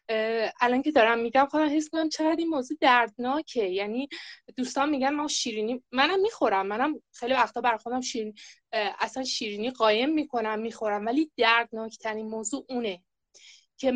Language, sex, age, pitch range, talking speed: Persian, female, 20-39, 230-300 Hz, 150 wpm